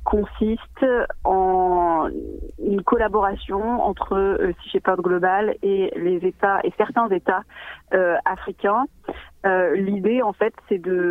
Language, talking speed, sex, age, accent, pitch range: French, 125 wpm, female, 30-49, French, 180-220 Hz